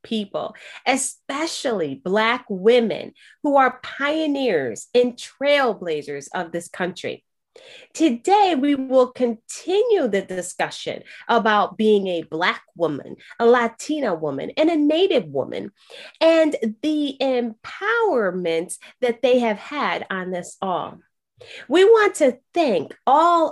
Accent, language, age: American, English, 30-49